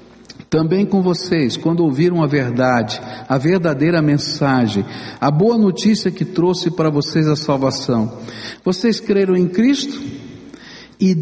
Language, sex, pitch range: Portuguese, male, 130-185 Hz